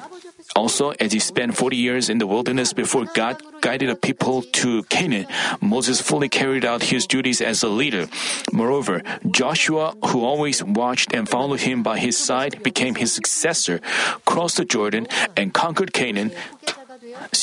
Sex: male